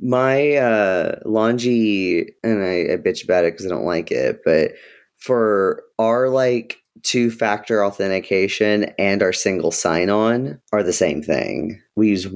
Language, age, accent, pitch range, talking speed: English, 20-39, American, 90-120 Hz, 155 wpm